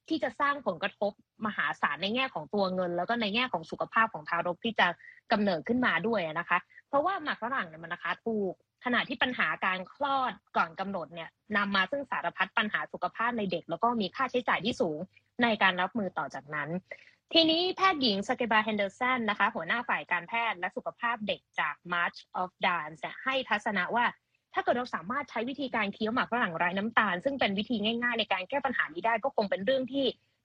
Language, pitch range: Thai, 190-260 Hz